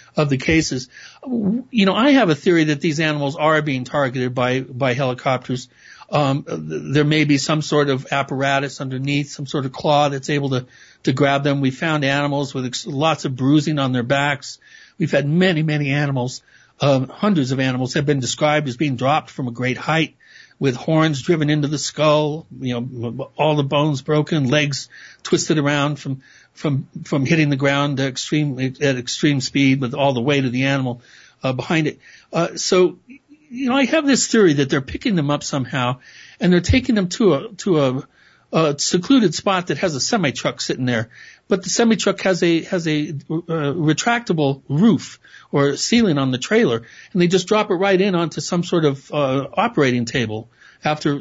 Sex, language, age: male, English, 60-79